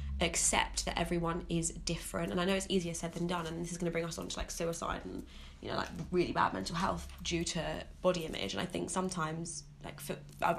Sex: female